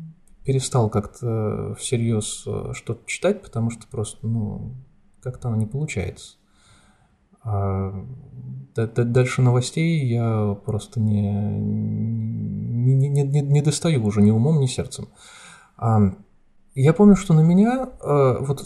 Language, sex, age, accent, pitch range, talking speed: Russian, male, 20-39, native, 105-140 Hz, 105 wpm